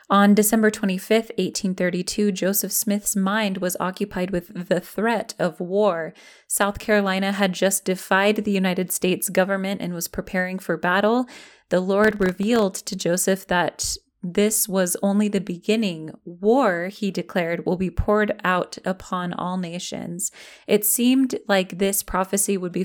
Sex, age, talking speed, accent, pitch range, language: female, 20-39, 145 wpm, American, 180-215 Hz, English